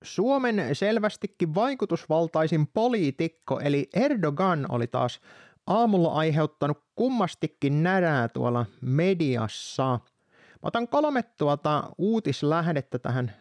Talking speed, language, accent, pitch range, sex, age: 90 wpm, Finnish, native, 140-205 Hz, male, 30-49